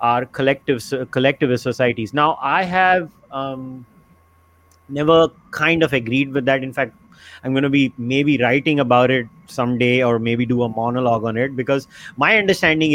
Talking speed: 160 wpm